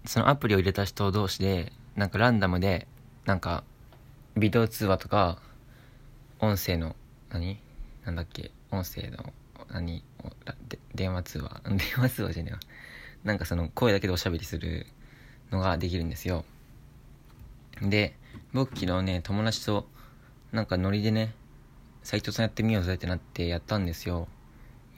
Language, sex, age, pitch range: Japanese, male, 20-39, 90-125 Hz